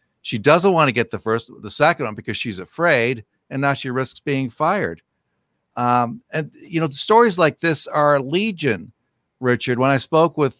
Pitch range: 125-160 Hz